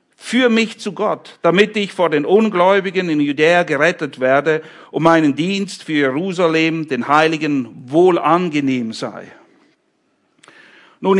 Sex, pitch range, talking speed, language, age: male, 155-225 Hz, 125 wpm, English, 50-69